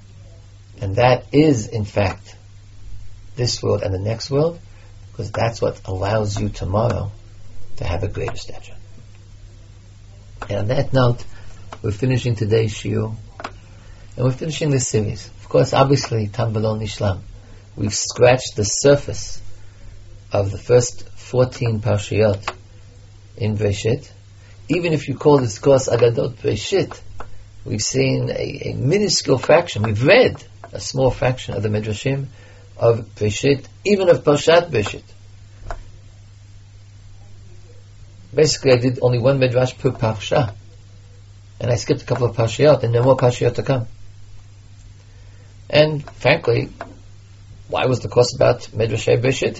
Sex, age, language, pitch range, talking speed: male, 50-69, English, 100-125 Hz, 130 wpm